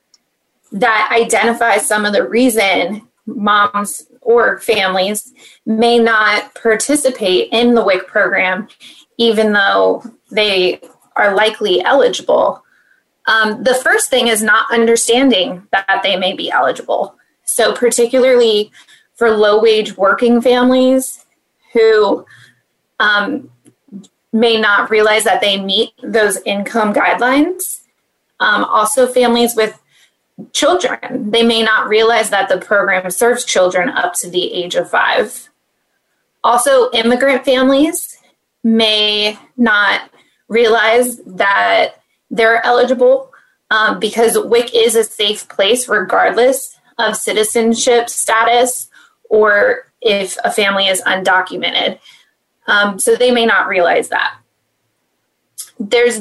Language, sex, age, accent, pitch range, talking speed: English, female, 20-39, American, 210-250 Hz, 110 wpm